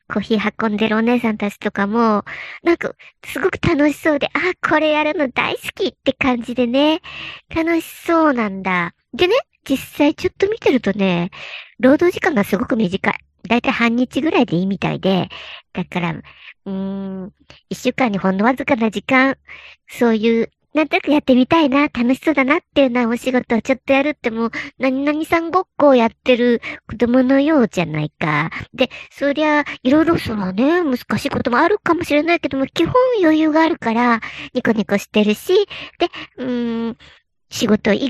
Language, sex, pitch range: Japanese, male, 200-285 Hz